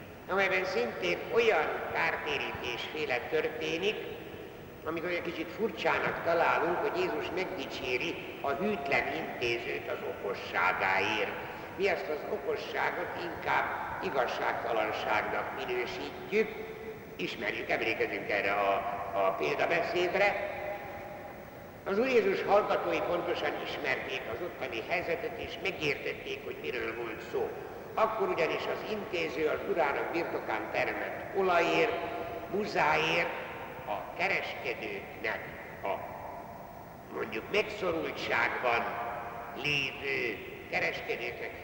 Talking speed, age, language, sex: 90 wpm, 60-79, Hungarian, male